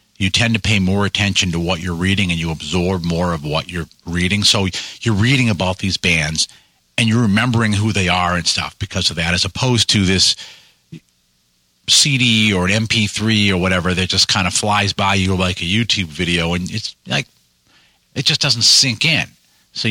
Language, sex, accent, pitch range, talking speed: English, male, American, 85-110 Hz, 195 wpm